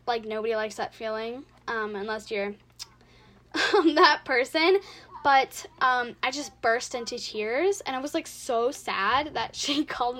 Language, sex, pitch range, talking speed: English, female, 220-290 Hz, 160 wpm